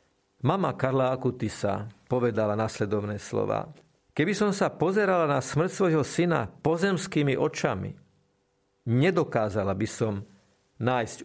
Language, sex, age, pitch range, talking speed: Slovak, male, 50-69, 115-150 Hz, 105 wpm